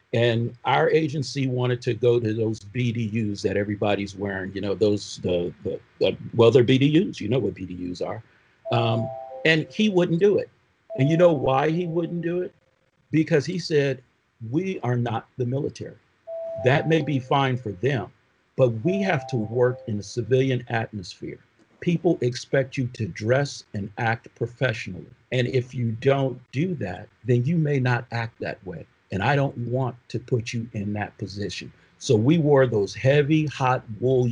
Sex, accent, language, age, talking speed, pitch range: male, American, English, 50-69, 175 wpm, 110-145 Hz